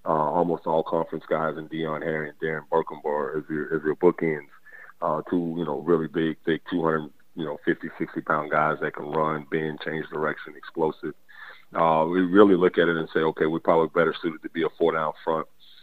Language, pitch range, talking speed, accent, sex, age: English, 80-85 Hz, 215 wpm, American, male, 30-49